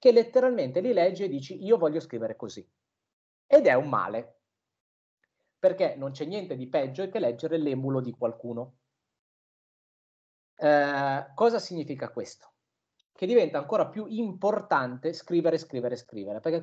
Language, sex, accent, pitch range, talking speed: Italian, male, native, 135-195 Hz, 135 wpm